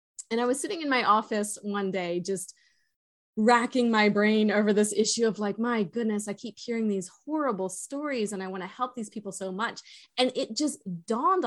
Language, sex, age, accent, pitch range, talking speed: English, female, 20-39, American, 195-235 Hz, 200 wpm